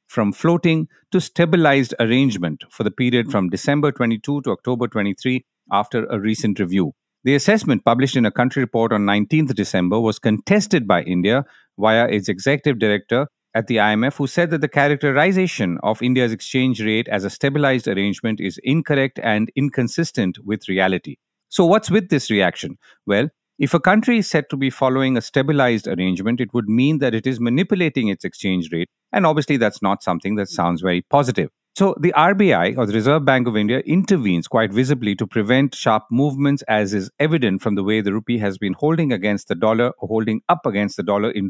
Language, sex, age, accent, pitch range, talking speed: English, male, 50-69, Indian, 105-145 Hz, 190 wpm